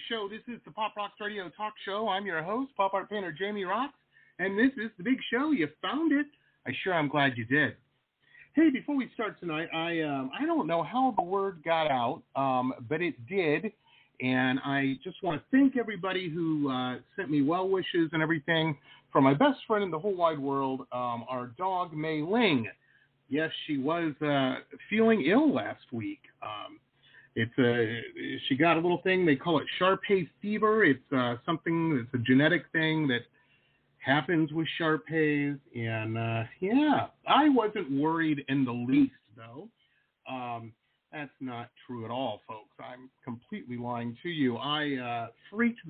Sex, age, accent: male, 40-59, American